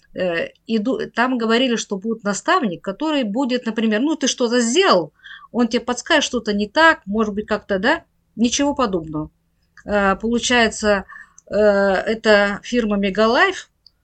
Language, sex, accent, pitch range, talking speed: Russian, female, native, 205-245 Hz, 125 wpm